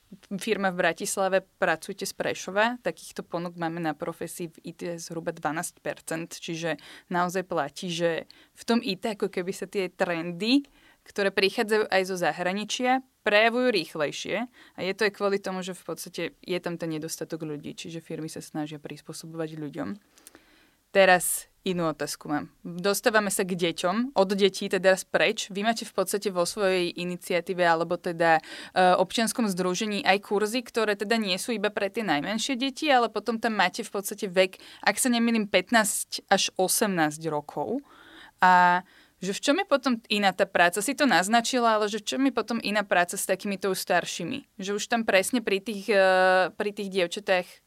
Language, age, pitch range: Slovak, 20-39, 175-215 Hz